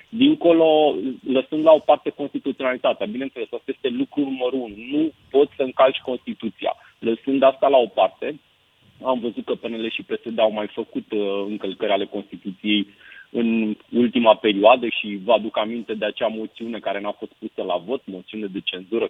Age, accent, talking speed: 30-49, native, 165 wpm